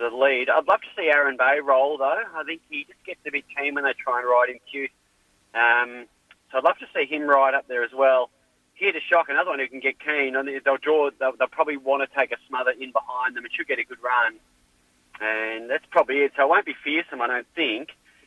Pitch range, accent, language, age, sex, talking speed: 130-160 Hz, Australian, English, 30-49, male, 255 wpm